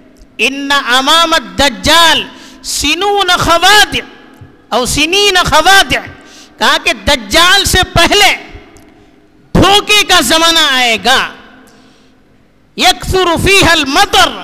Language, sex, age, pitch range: Urdu, female, 50-69, 260-355 Hz